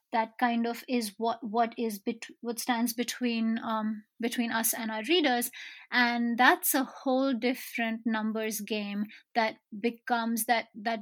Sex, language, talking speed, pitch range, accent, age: female, English, 145 wpm, 225-260 Hz, Indian, 30-49